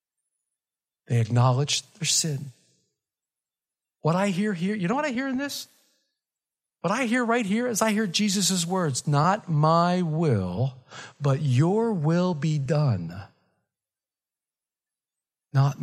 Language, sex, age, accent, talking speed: English, male, 50-69, American, 130 wpm